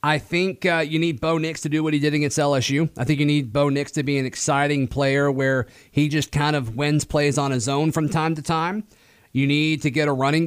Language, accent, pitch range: English, American, 135-160 Hz